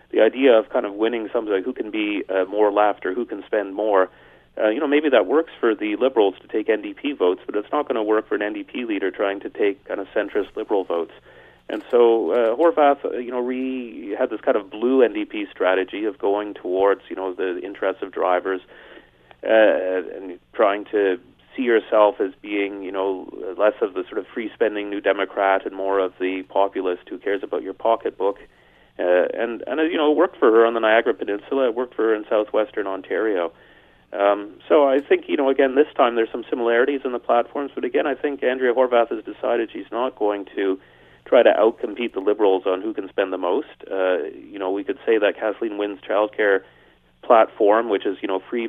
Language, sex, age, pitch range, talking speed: English, male, 30-49, 100-155 Hz, 215 wpm